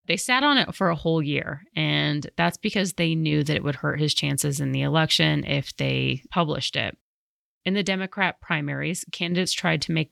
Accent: American